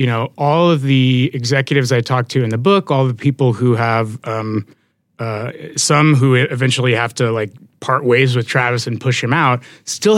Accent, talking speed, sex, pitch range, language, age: American, 200 wpm, male, 120-145 Hz, English, 30-49